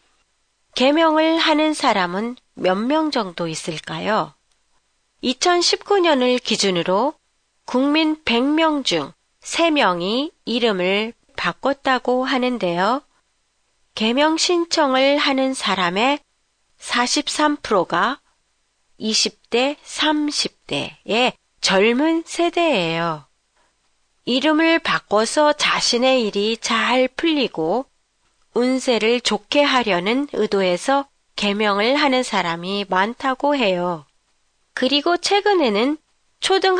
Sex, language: female, Japanese